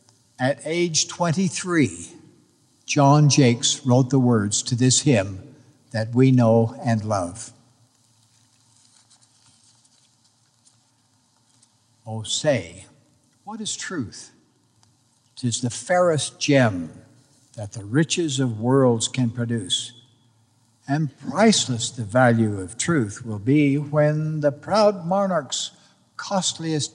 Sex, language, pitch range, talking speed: male, English, 120-150 Hz, 100 wpm